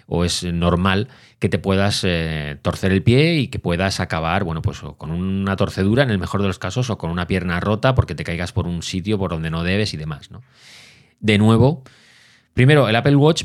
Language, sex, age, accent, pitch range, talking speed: Spanish, male, 30-49, Spanish, 90-115 Hz, 220 wpm